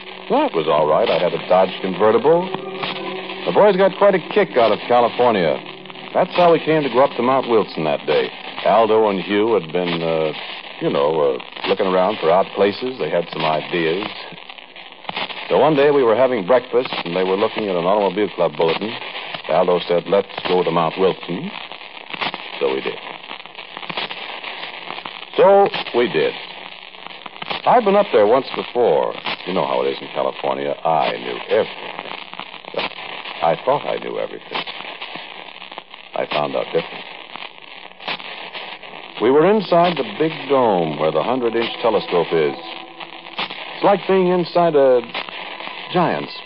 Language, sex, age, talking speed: English, male, 60-79, 155 wpm